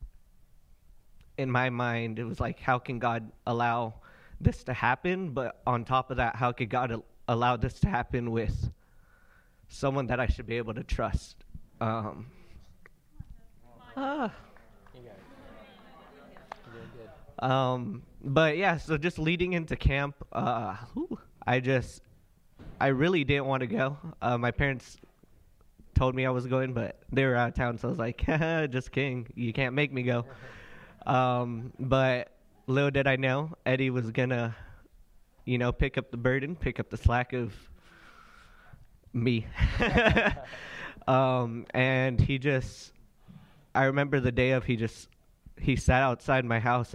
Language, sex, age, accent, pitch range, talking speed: English, male, 20-39, American, 120-135 Hz, 145 wpm